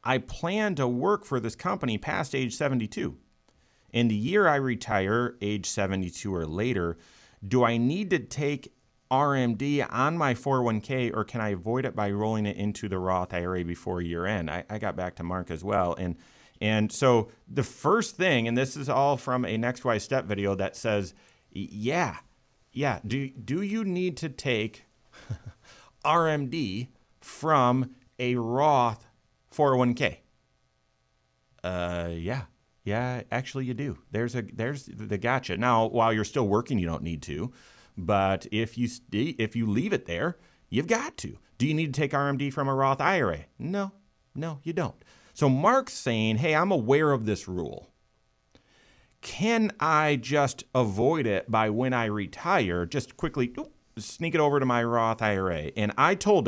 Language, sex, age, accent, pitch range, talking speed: English, male, 30-49, American, 105-140 Hz, 170 wpm